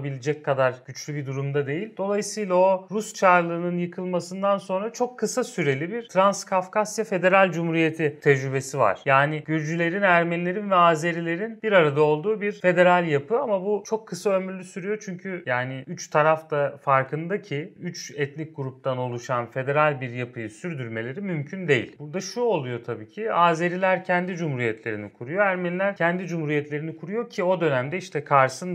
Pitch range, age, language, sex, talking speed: 135-185 Hz, 30-49, Turkish, male, 150 wpm